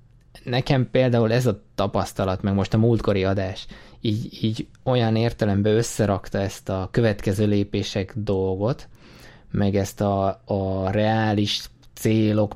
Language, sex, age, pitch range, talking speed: Hungarian, male, 20-39, 100-115 Hz, 125 wpm